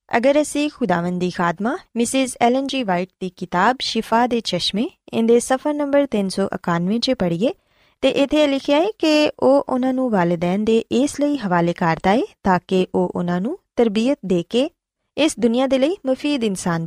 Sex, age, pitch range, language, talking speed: female, 20-39, 185-265 Hz, Punjabi, 170 wpm